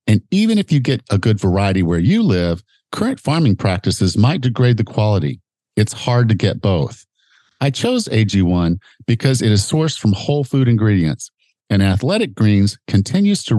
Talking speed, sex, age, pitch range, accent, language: 170 wpm, male, 50-69, 100-135 Hz, American, English